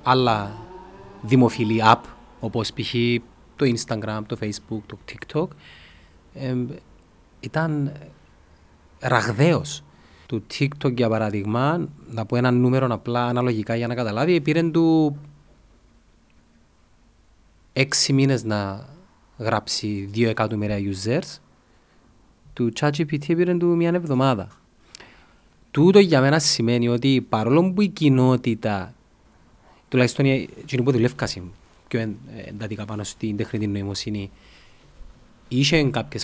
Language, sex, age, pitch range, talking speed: Greek, male, 30-49, 110-135 Hz, 100 wpm